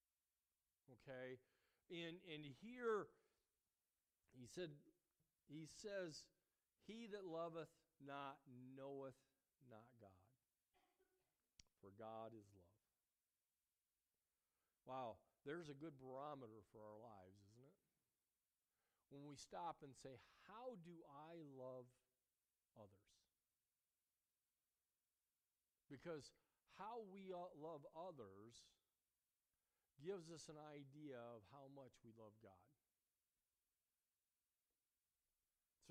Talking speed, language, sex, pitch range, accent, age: 90 wpm, English, male, 120-175 Hz, American, 50-69